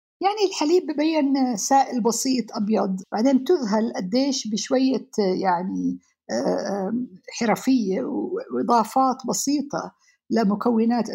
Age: 50-69